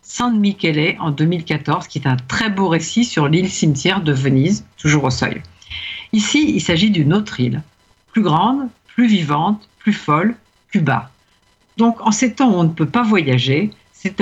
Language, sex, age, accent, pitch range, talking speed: French, female, 50-69, French, 145-210 Hz, 175 wpm